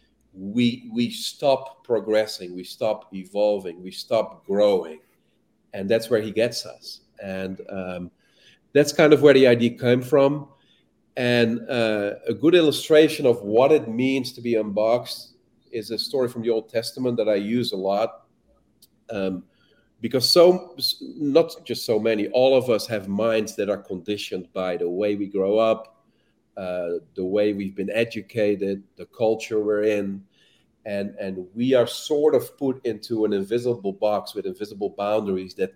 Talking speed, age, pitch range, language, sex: 160 wpm, 40-59, 100-130 Hz, English, male